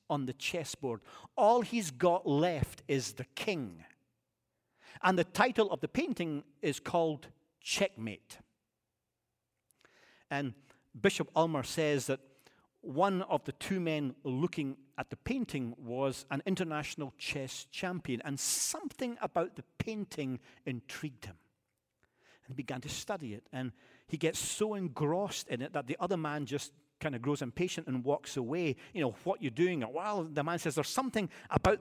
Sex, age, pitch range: male, 50-69, 135-185 Hz